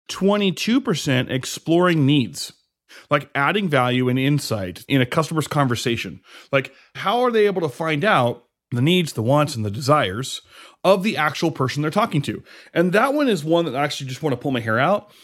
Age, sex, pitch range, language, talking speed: 30-49, male, 125-170 Hz, English, 190 wpm